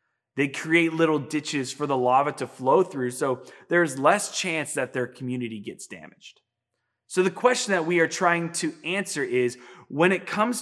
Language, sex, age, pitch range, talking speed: English, male, 20-39, 125-170 Hz, 180 wpm